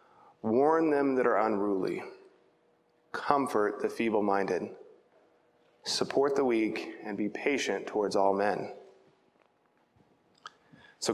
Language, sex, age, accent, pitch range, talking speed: English, male, 20-39, American, 110-130 Hz, 95 wpm